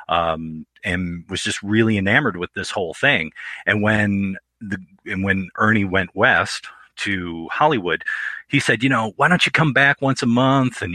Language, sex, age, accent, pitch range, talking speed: English, male, 40-59, American, 90-115 Hz, 180 wpm